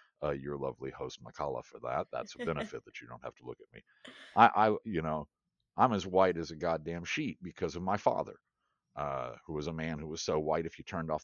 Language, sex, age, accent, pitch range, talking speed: English, male, 50-69, American, 75-95 Hz, 245 wpm